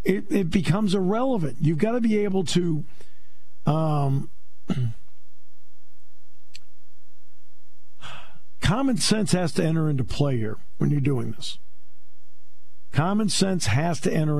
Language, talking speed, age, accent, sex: English, 115 wpm, 50-69, American, male